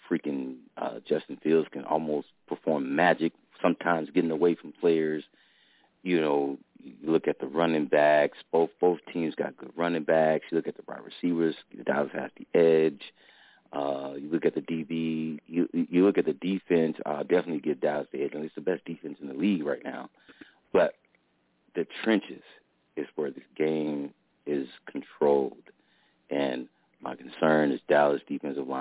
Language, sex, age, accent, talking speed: English, male, 40-59, American, 170 wpm